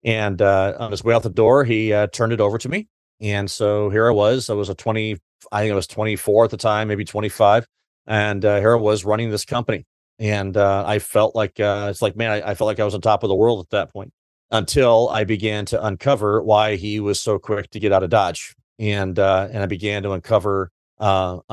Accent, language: American, English